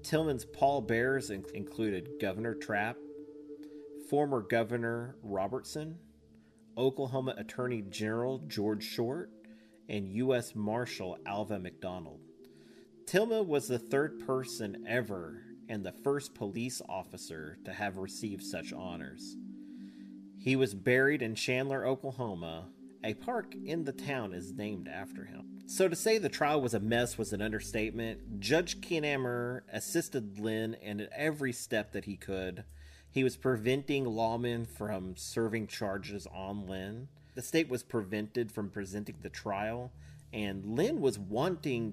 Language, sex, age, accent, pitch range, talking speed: English, male, 40-59, American, 100-130 Hz, 135 wpm